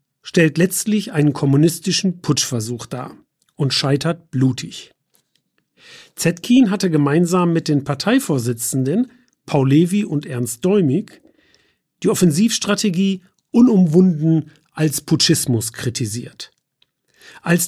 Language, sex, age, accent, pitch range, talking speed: German, male, 40-59, German, 135-205 Hz, 90 wpm